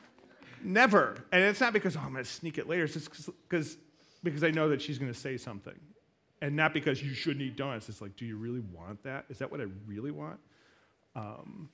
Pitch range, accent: 120-150 Hz, American